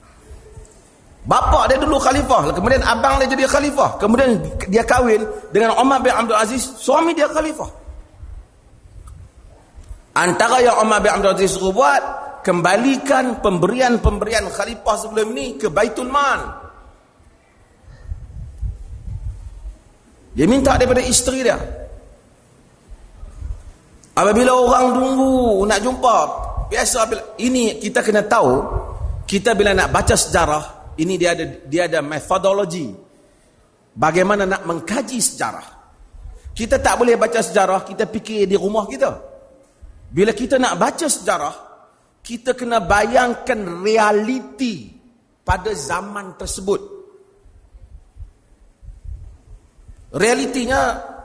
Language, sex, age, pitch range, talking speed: Malay, male, 40-59, 170-250 Hz, 105 wpm